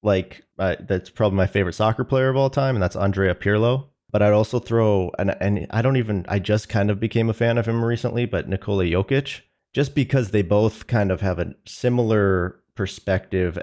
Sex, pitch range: male, 90-110 Hz